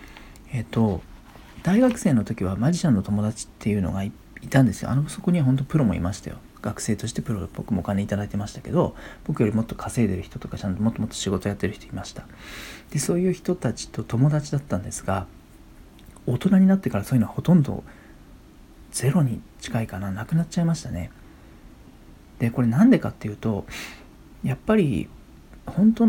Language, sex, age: Japanese, male, 40-59